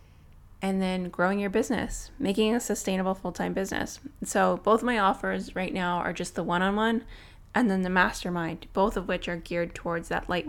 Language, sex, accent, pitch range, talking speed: English, female, American, 170-200 Hz, 205 wpm